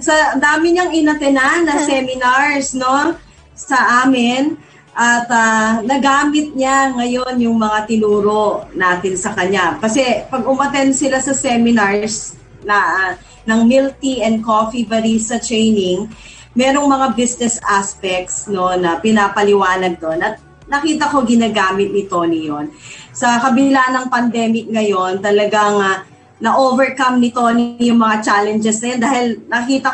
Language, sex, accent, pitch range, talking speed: Filipino, female, native, 210-270 Hz, 130 wpm